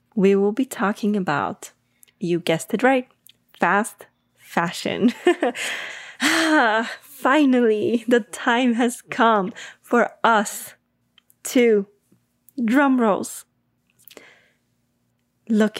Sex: female